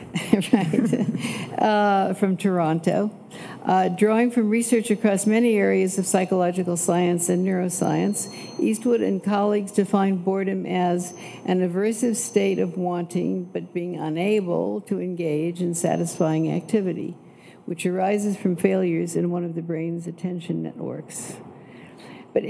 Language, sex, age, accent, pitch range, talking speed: English, female, 60-79, American, 175-210 Hz, 125 wpm